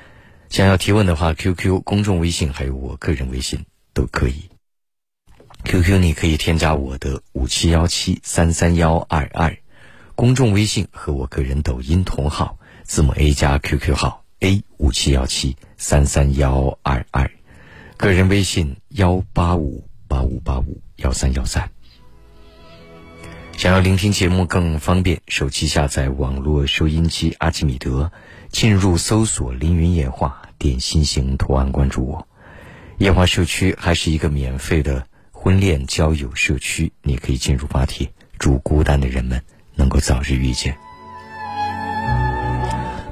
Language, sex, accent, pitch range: Chinese, male, native, 70-95 Hz